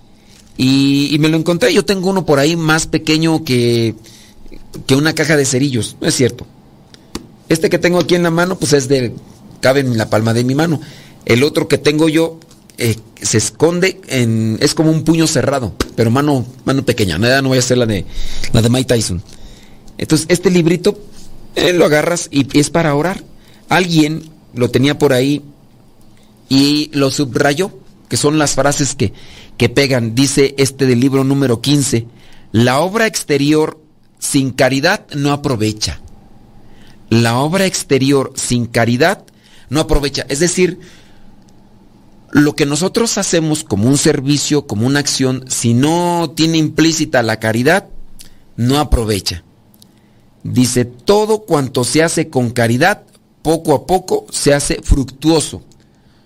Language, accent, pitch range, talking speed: Spanish, Mexican, 115-160 Hz, 155 wpm